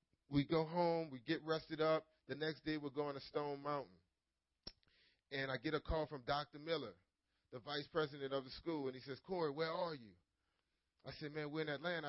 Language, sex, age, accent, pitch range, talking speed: English, male, 30-49, American, 120-160 Hz, 210 wpm